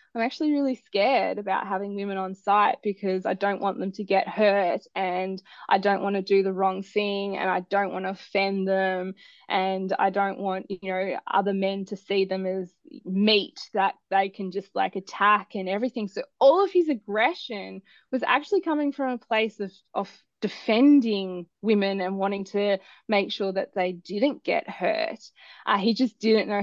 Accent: Australian